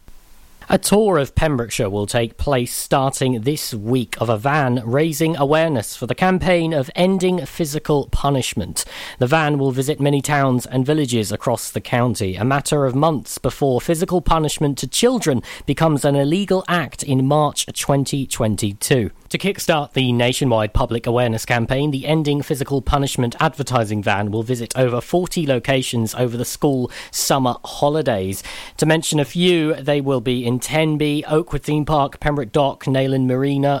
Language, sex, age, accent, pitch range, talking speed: English, male, 40-59, British, 120-155 Hz, 155 wpm